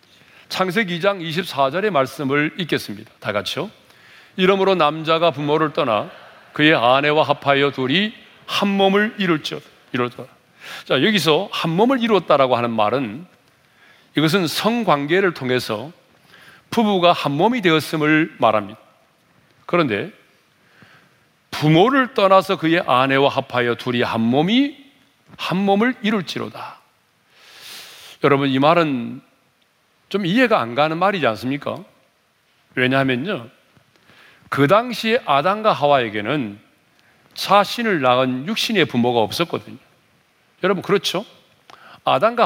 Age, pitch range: 40-59, 135-200 Hz